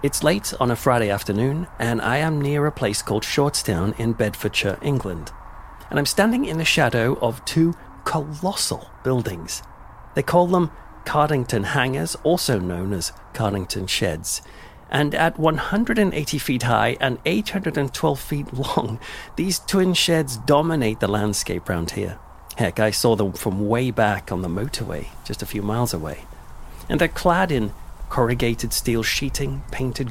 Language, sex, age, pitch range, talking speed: English, male, 40-59, 110-145 Hz, 155 wpm